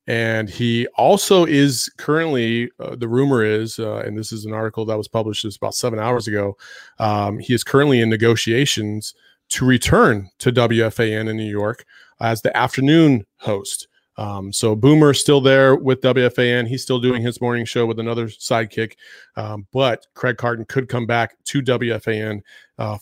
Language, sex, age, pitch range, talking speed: English, male, 30-49, 110-125 Hz, 170 wpm